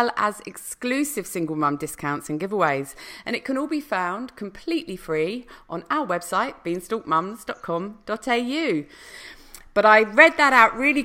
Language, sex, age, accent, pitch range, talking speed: English, female, 40-59, British, 175-245 Hz, 135 wpm